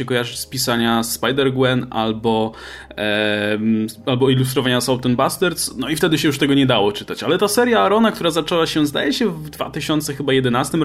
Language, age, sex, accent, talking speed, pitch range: Polish, 20-39, male, native, 170 wpm, 130-170 Hz